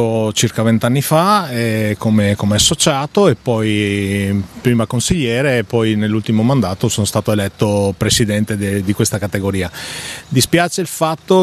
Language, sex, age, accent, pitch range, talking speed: Italian, male, 30-49, native, 100-120 Hz, 135 wpm